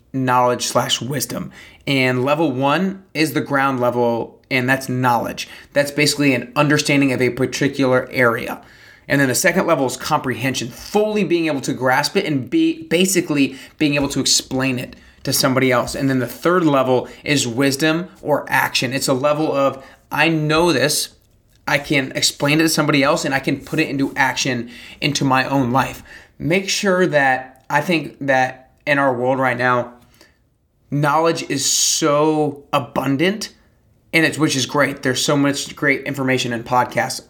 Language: English